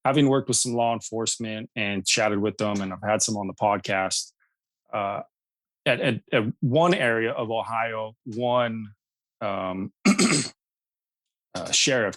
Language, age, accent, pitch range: English, 30-49, American, 105-125 Hz